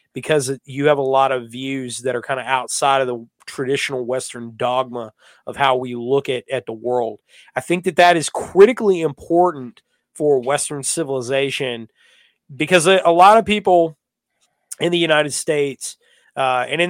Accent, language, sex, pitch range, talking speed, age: American, English, male, 130-165 Hz, 170 wpm, 30-49